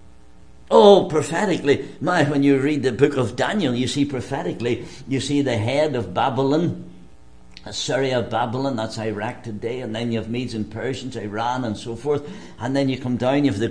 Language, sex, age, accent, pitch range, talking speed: English, male, 60-79, British, 105-170 Hz, 190 wpm